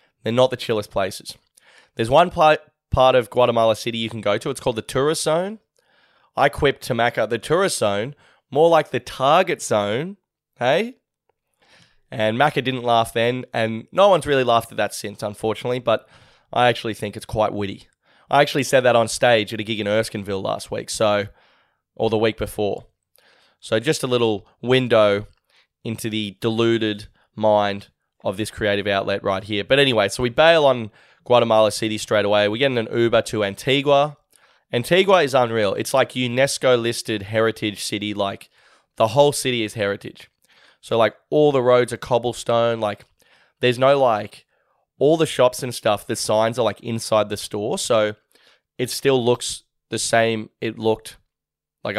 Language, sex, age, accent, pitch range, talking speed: English, male, 20-39, Australian, 105-130 Hz, 175 wpm